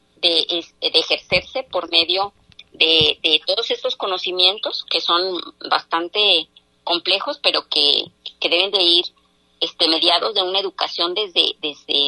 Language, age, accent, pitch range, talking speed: Spanish, 40-59, Mexican, 165-195 Hz, 135 wpm